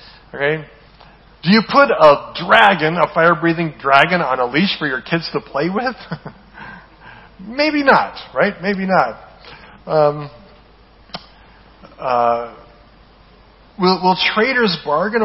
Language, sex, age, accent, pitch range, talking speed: English, male, 40-59, American, 145-190 Hz, 115 wpm